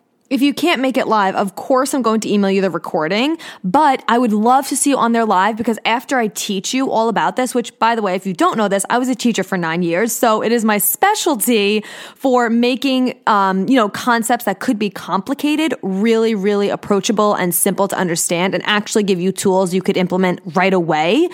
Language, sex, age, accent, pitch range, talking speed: English, female, 20-39, American, 195-260 Hz, 230 wpm